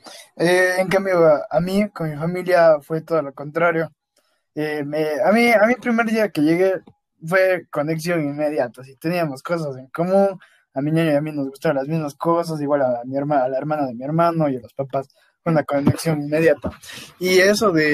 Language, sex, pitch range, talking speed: Spanish, male, 145-170 Hz, 215 wpm